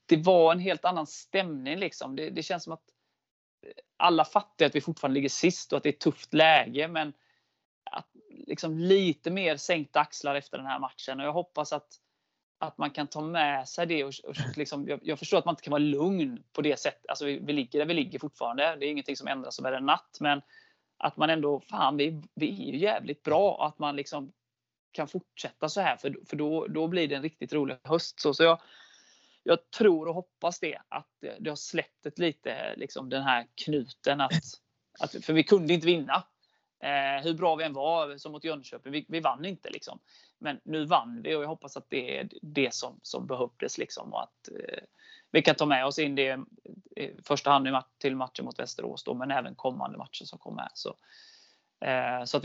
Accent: native